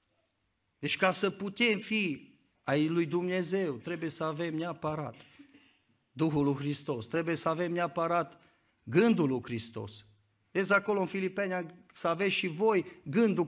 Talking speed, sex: 140 wpm, male